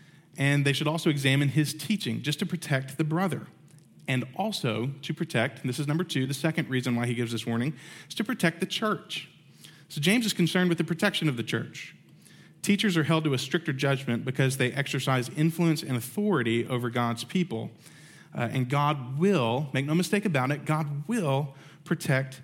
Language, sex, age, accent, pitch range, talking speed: English, male, 40-59, American, 135-165 Hz, 195 wpm